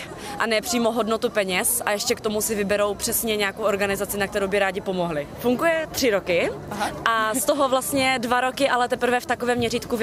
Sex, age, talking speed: female, 20-39, 195 wpm